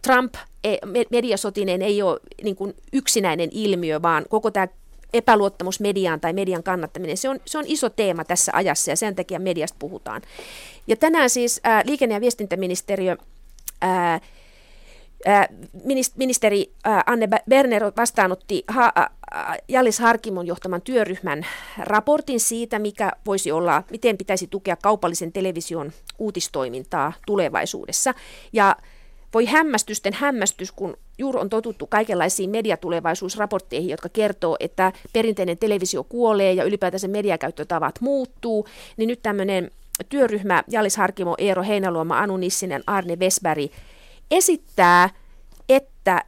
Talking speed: 120 wpm